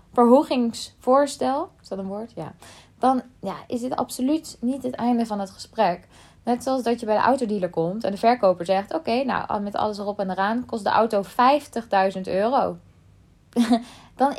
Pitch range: 190-260 Hz